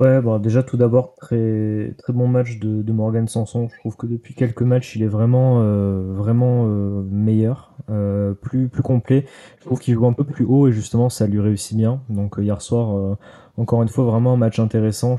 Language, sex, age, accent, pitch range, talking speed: French, male, 20-39, French, 105-120 Hz, 220 wpm